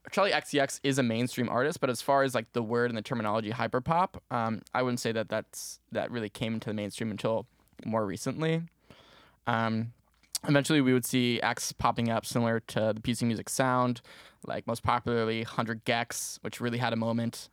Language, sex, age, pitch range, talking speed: English, male, 10-29, 110-125 Hz, 190 wpm